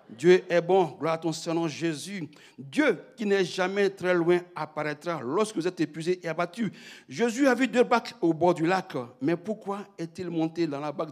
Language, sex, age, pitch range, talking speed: French, male, 60-79, 165-220 Hz, 200 wpm